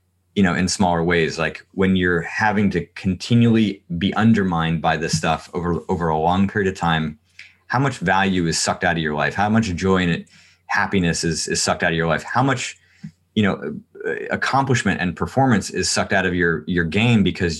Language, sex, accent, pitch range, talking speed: English, male, American, 85-100 Hz, 200 wpm